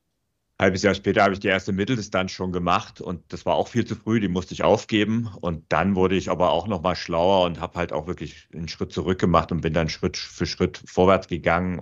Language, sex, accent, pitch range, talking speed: German, male, German, 85-105 Hz, 245 wpm